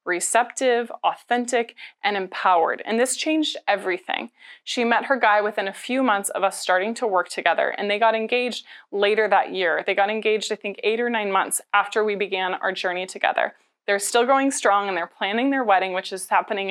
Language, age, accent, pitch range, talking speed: English, 20-39, American, 190-235 Hz, 200 wpm